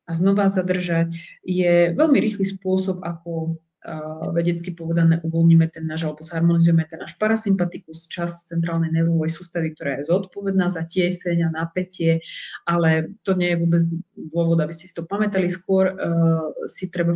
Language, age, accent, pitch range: Czech, 30-49, native, 165-195 Hz